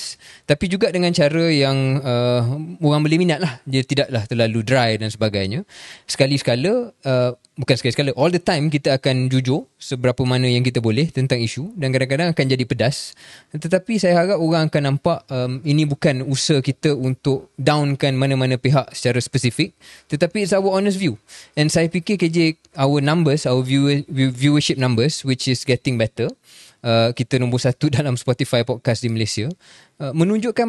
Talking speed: 160 wpm